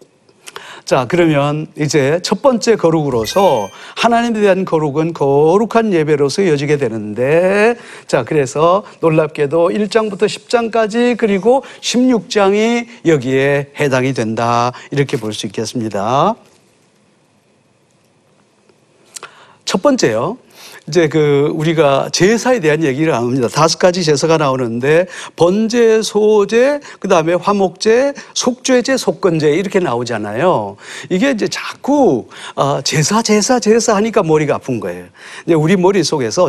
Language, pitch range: Korean, 150-225 Hz